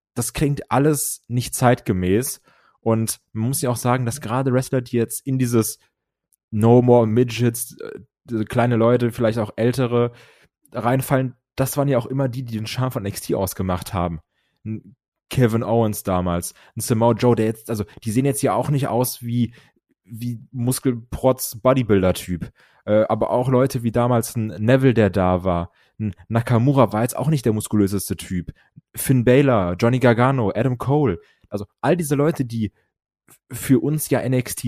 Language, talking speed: German, 160 wpm